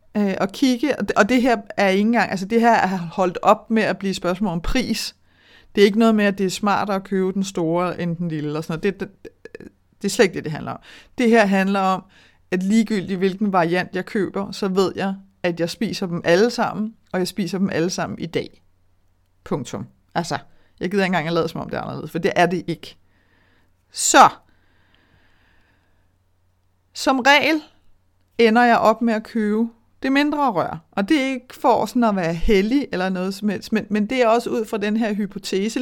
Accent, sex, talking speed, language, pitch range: native, female, 220 wpm, Danish, 180-225 Hz